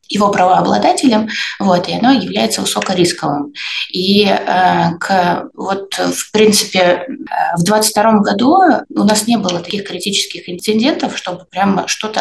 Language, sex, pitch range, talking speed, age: Russian, female, 175-220 Hz, 115 wpm, 20-39